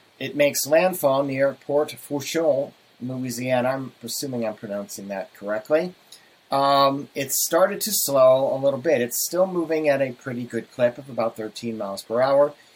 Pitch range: 120-150 Hz